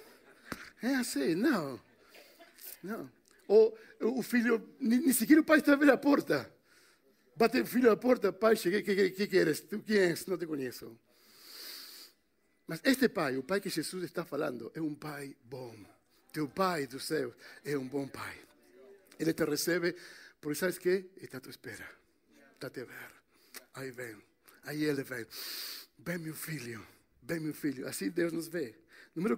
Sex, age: male, 60-79